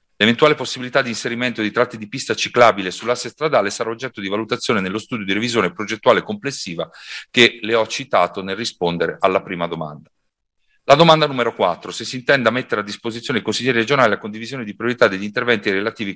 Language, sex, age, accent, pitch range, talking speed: Italian, male, 40-59, native, 100-125 Hz, 190 wpm